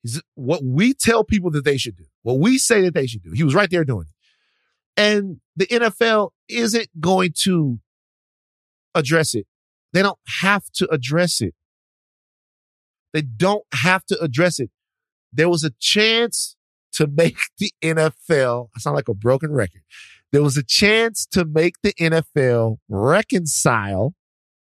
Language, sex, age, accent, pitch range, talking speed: English, male, 50-69, American, 115-185 Hz, 155 wpm